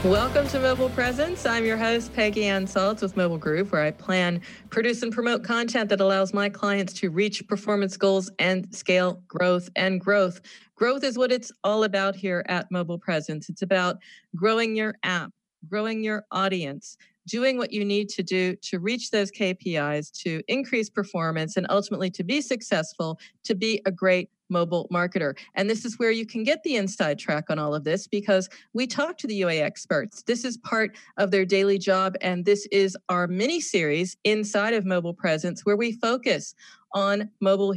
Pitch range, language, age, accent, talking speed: 180-220 Hz, English, 40-59, American, 185 wpm